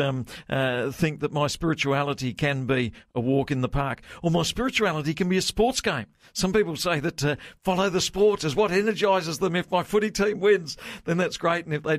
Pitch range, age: 135-175 Hz, 50-69